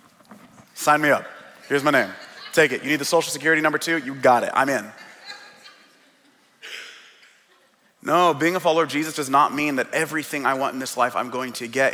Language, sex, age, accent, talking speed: English, male, 30-49, American, 200 wpm